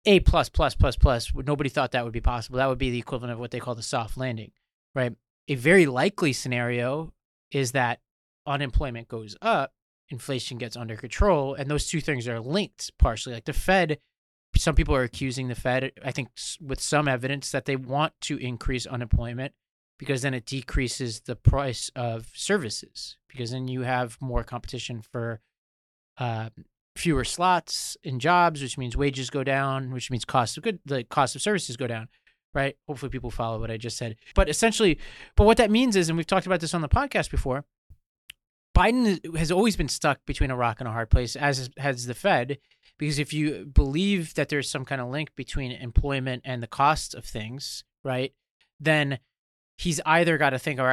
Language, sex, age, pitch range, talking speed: English, male, 30-49, 120-150 Hz, 195 wpm